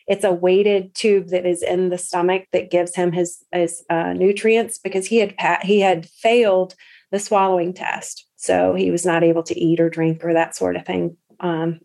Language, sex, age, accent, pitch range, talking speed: English, female, 30-49, American, 175-200 Hz, 210 wpm